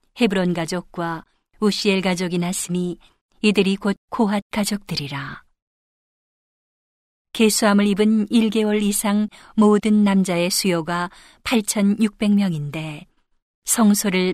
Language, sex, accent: Korean, female, native